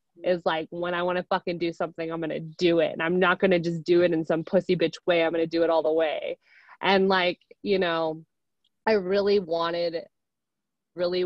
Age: 20-39